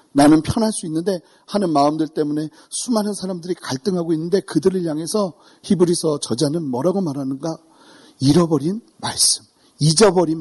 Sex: male